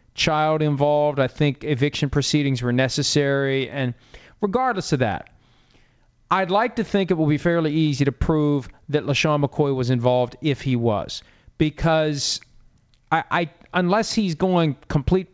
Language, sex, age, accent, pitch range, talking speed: English, male, 40-59, American, 130-155 Hz, 150 wpm